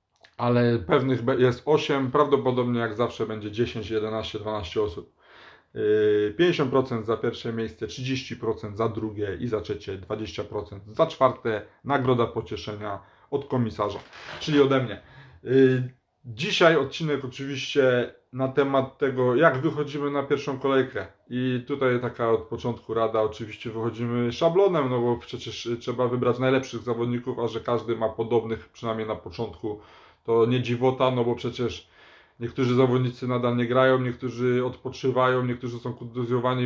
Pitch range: 110-130 Hz